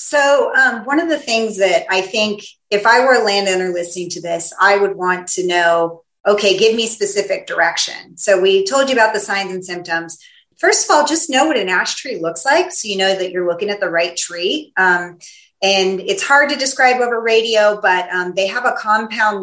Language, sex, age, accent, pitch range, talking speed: English, female, 30-49, American, 180-225 Hz, 220 wpm